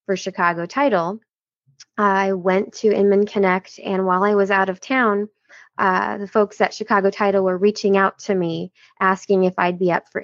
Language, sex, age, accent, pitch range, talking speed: English, female, 20-39, American, 180-210 Hz, 190 wpm